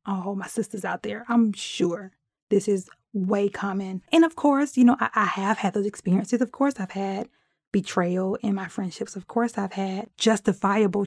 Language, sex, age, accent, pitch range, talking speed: English, female, 20-39, American, 195-230 Hz, 190 wpm